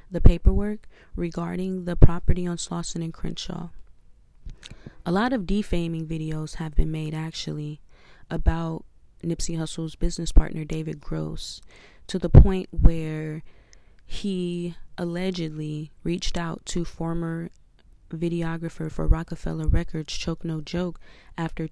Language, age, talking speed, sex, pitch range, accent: English, 20-39, 120 wpm, female, 155-170 Hz, American